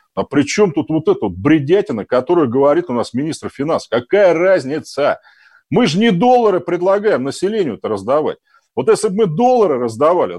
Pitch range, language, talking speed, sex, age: 145-235 Hz, Russian, 175 wpm, male, 40-59